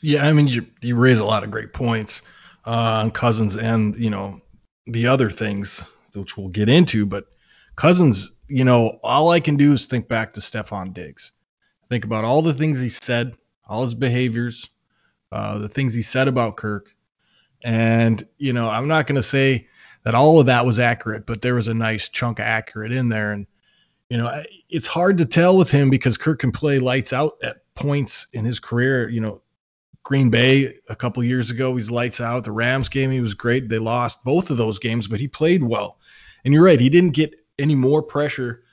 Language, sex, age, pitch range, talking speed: English, male, 20-39, 115-140 Hz, 210 wpm